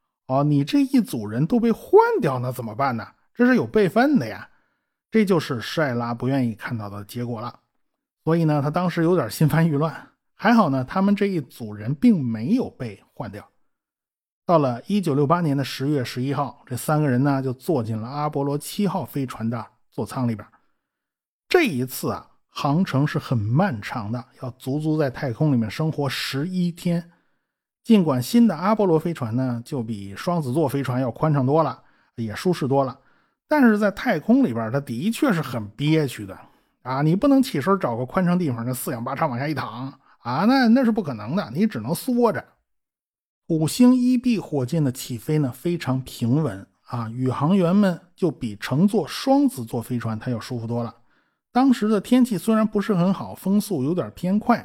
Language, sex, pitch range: Chinese, male, 125-195 Hz